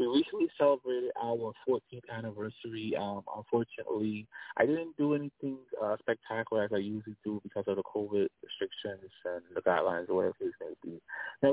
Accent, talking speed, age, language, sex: American, 185 wpm, 20-39, English, male